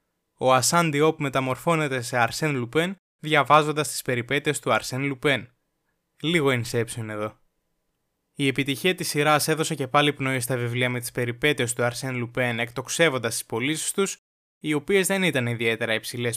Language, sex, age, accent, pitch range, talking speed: Greek, male, 20-39, native, 120-170 Hz, 155 wpm